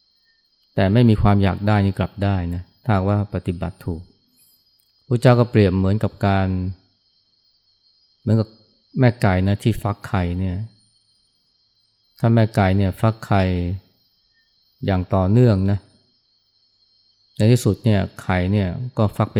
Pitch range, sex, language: 95-110 Hz, male, Thai